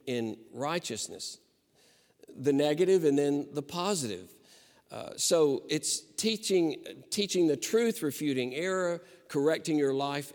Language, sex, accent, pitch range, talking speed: English, male, American, 100-155 Hz, 115 wpm